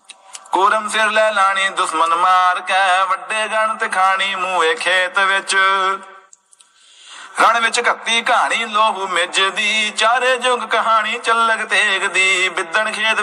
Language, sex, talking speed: Punjabi, male, 115 wpm